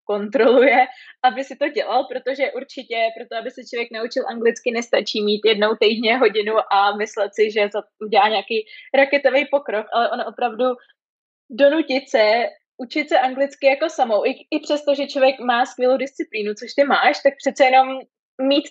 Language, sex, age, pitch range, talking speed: Czech, female, 20-39, 240-280 Hz, 165 wpm